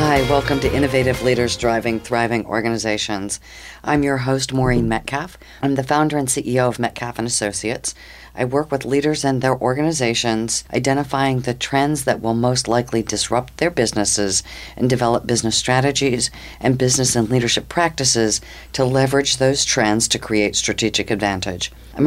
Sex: female